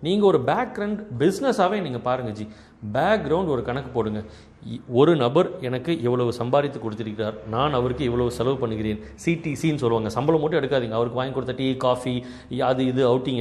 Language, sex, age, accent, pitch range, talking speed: Tamil, male, 30-49, native, 120-155 Hz, 160 wpm